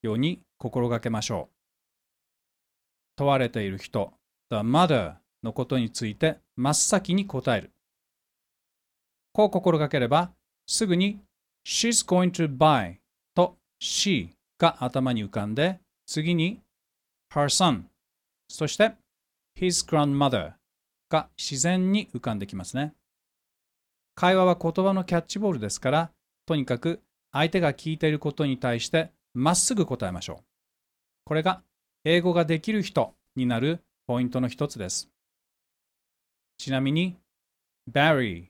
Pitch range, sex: 125-180 Hz, male